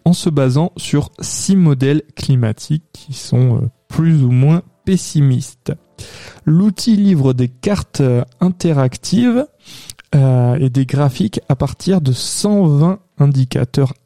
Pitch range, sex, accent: 130-160 Hz, male, French